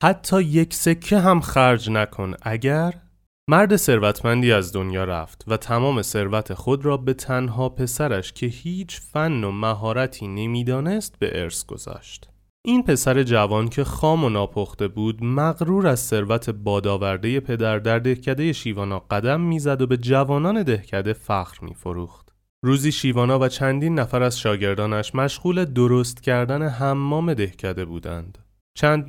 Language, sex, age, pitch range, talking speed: Persian, male, 30-49, 105-155 Hz, 140 wpm